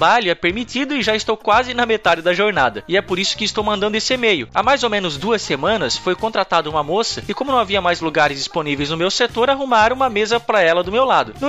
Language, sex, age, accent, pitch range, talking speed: Portuguese, male, 20-39, Brazilian, 180-235 Hz, 255 wpm